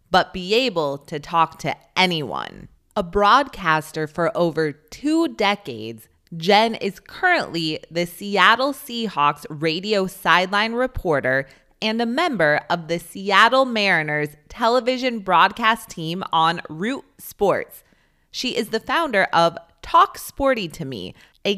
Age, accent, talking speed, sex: 20-39, American, 125 wpm, female